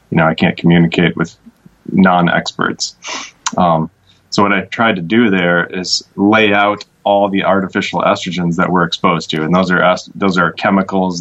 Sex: male